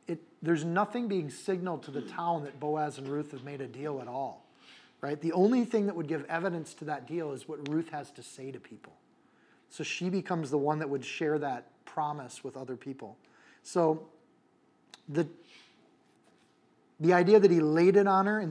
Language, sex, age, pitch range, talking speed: English, male, 30-49, 145-185 Hz, 195 wpm